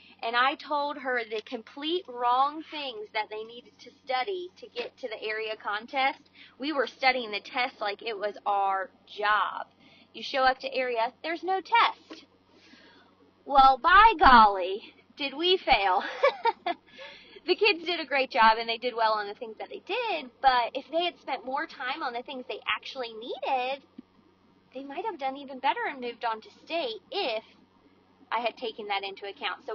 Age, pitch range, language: 20-39, 225-325 Hz, English